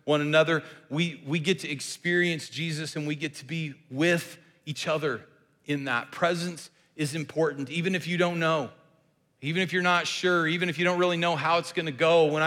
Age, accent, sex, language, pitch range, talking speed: 40-59, American, male, English, 145-170 Hz, 200 wpm